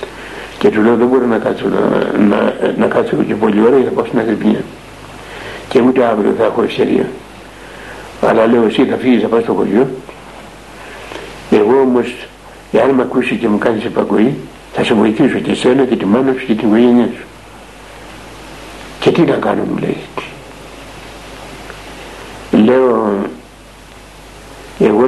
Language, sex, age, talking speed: Greek, male, 60-79, 150 wpm